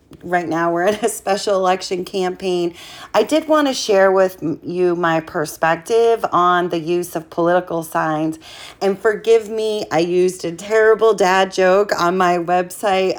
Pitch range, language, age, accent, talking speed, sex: 170-195 Hz, English, 30-49, American, 160 wpm, female